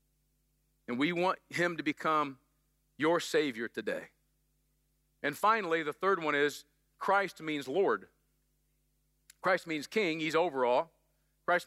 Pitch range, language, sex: 165-265 Hz, English, male